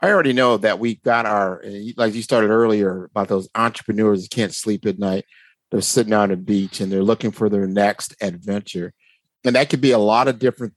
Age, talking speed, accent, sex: 50-69, 215 wpm, American, male